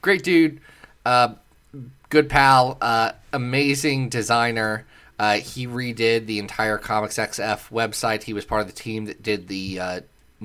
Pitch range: 100-130 Hz